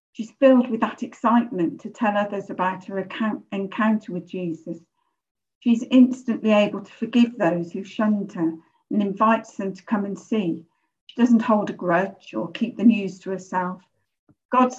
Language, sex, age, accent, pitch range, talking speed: English, female, 50-69, British, 185-230 Hz, 165 wpm